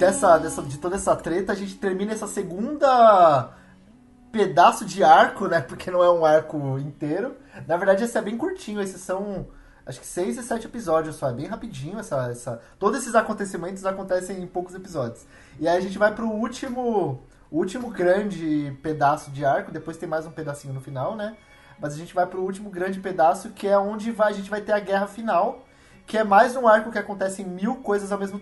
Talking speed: 200 wpm